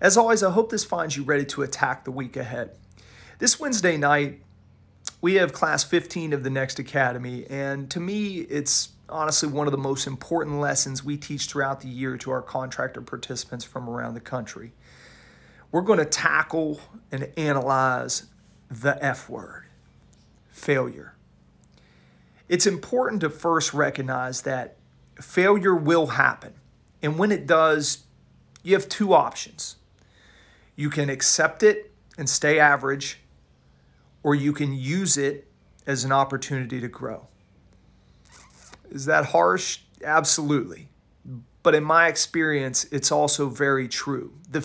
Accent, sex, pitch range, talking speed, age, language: American, male, 125-160 Hz, 140 wpm, 40-59, English